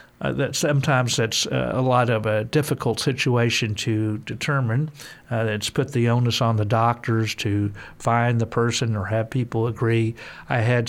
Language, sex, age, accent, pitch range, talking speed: English, male, 50-69, American, 115-135 Hz, 170 wpm